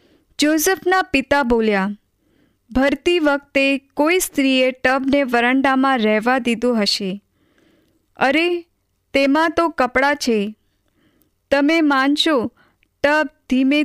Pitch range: 230-300 Hz